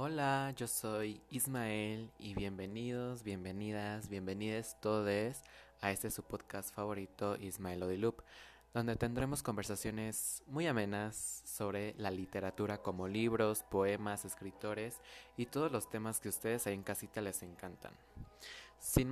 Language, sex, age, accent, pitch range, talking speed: English, male, 20-39, Mexican, 95-115 Hz, 125 wpm